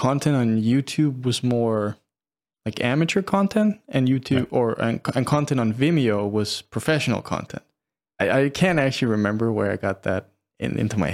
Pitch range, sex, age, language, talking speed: 110-130 Hz, male, 20-39, English, 160 wpm